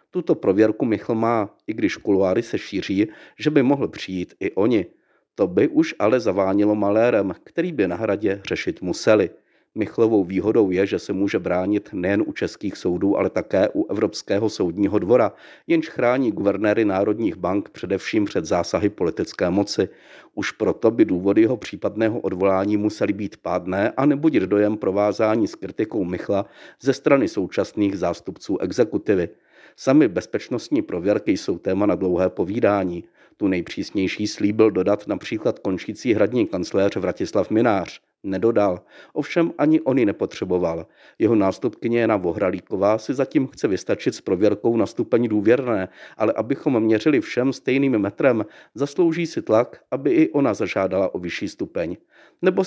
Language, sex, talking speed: Czech, male, 145 wpm